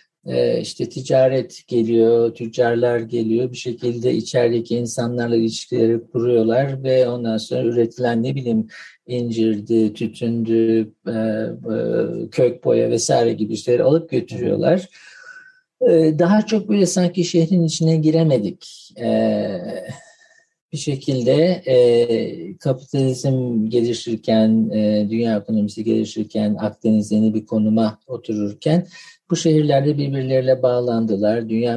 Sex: male